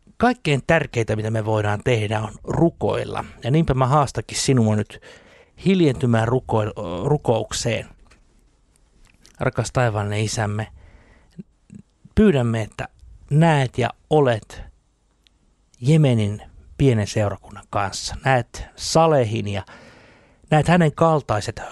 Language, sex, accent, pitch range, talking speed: Finnish, male, native, 105-135 Hz, 95 wpm